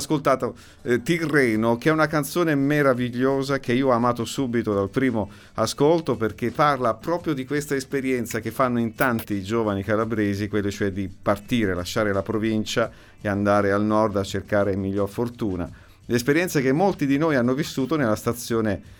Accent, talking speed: native, 165 wpm